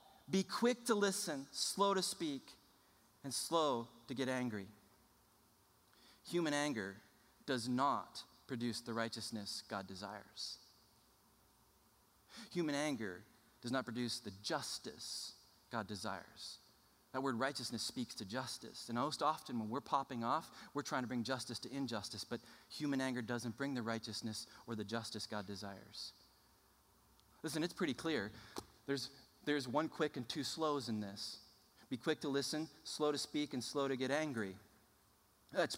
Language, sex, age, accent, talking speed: English, male, 30-49, American, 150 wpm